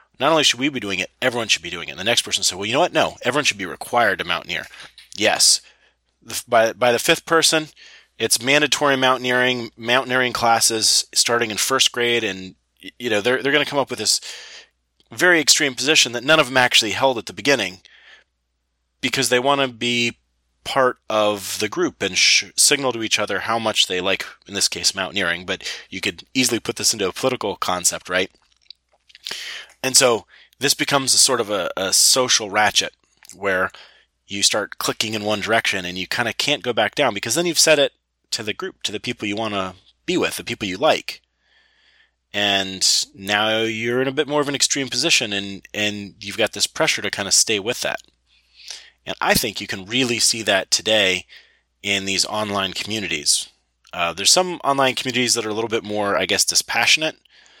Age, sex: 30-49, male